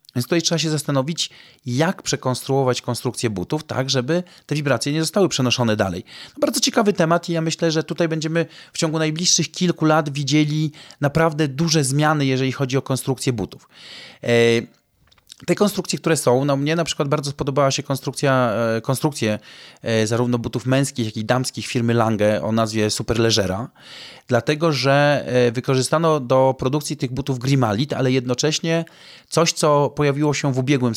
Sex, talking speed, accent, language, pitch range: male, 155 wpm, native, Polish, 125-155 Hz